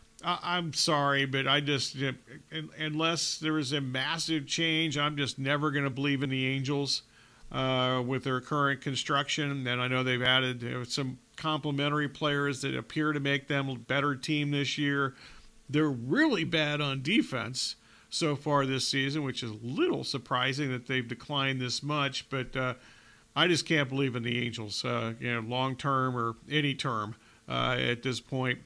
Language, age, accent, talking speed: English, 50-69, American, 185 wpm